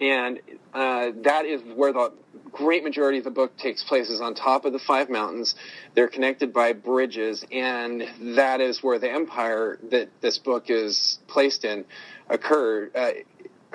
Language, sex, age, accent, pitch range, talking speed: English, male, 40-59, American, 120-135 Hz, 160 wpm